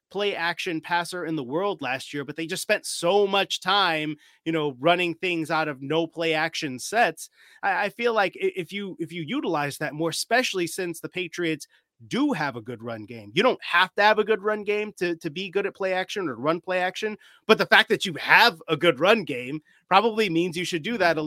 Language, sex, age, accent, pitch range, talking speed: English, male, 30-49, American, 155-190 Hz, 235 wpm